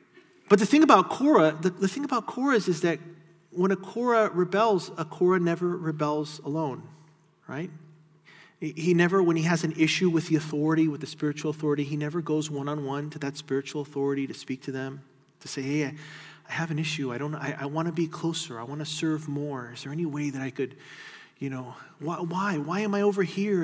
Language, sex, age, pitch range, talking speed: English, male, 40-59, 150-195 Hz, 215 wpm